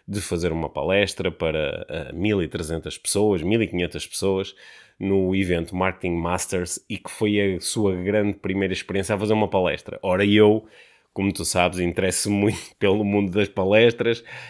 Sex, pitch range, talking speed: male, 90-105 Hz, 155 wpm